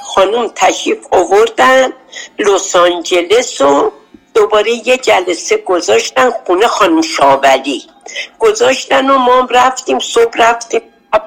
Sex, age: female, 60-79